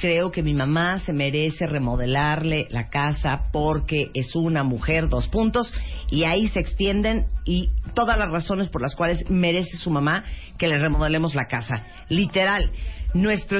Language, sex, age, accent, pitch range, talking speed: Spanish, female, 40-59, Mexican, 145-185 Hz, 160 wpm